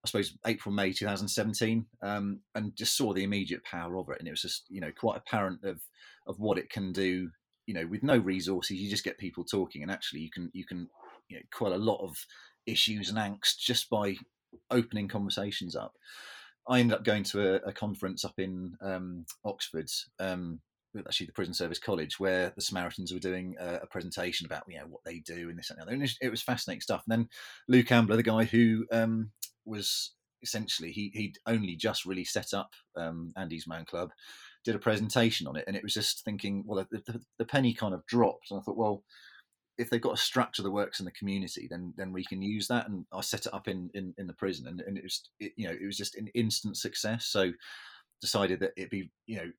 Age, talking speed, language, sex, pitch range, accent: 30-49, 230 wpm, English, male, 95-110 Hz, British